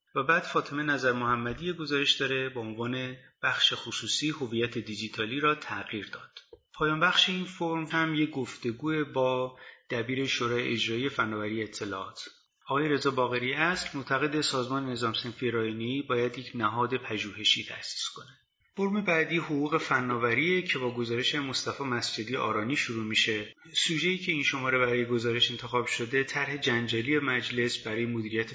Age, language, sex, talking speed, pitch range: 30-49, Persian, male, 145 wpm, 115-145 Hz